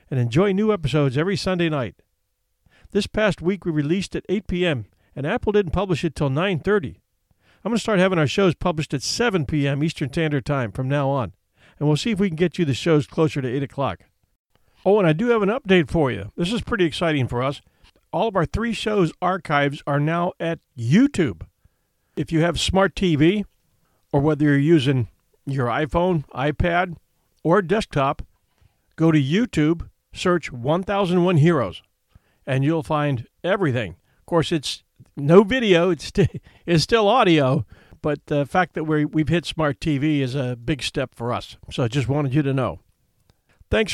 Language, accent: English, American